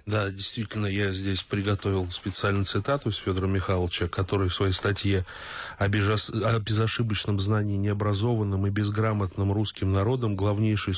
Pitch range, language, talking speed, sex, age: 100-125 Hz, Russian, 125 wpm, male, 20-39